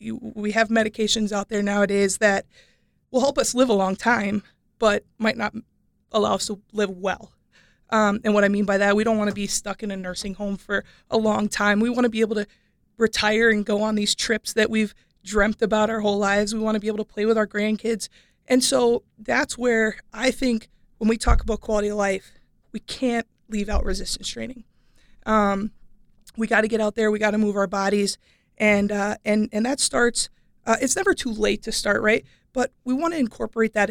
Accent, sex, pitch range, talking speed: American, female, 205-230 Hz, 210 wpm